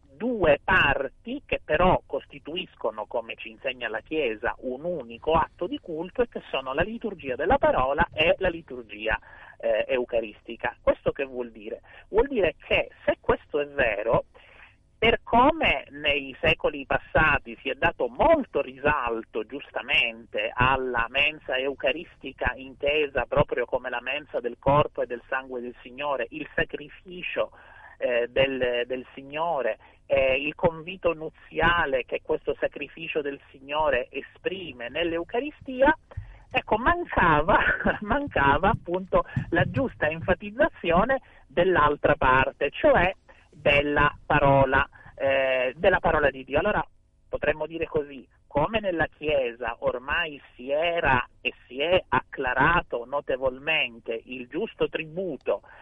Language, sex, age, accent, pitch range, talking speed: Italian, male, 40-59, native, 135-195 Hz, 120 wpm